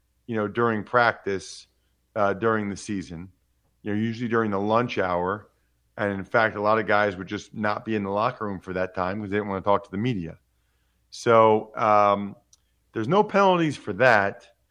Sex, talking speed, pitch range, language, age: male, 200 wpm, 100-135 Hz, English, 40-59